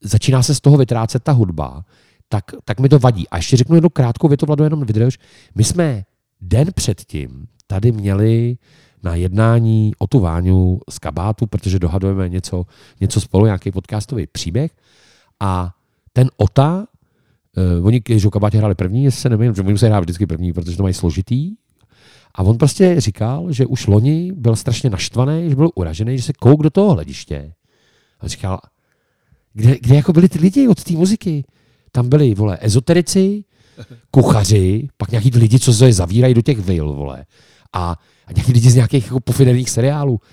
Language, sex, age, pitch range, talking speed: Czech, male, 40-59, 100-135 Hz, 170 wpm